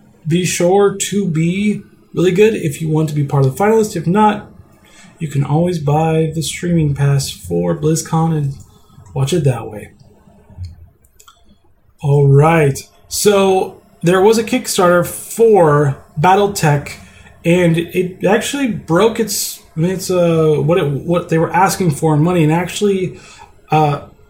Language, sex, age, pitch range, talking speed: English, male, 20-39, 145-185 Hz, 145 wpm